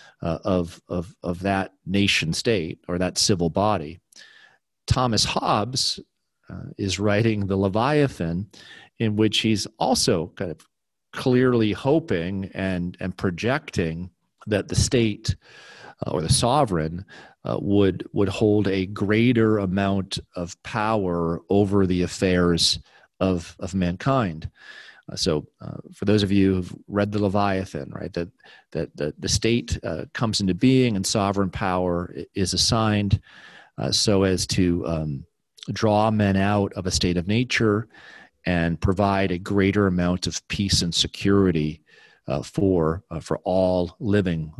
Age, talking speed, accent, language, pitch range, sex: 40-59, 140 wpm, American, English, 90-105 Hz, male